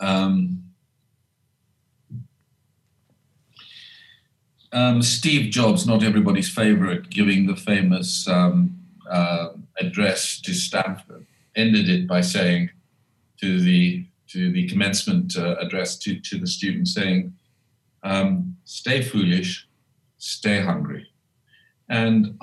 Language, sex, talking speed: English, male, 100 wpm